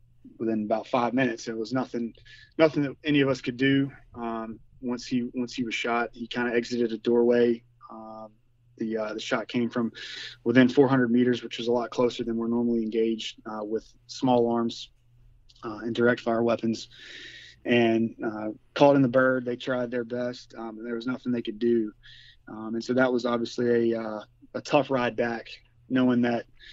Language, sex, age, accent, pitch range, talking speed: English, male, 30-49, American, 115-125 Hz, 195 wpm